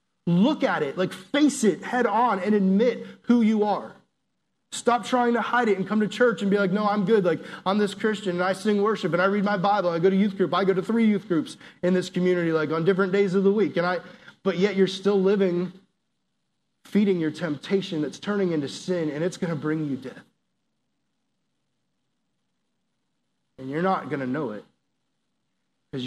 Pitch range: 155-195 Hz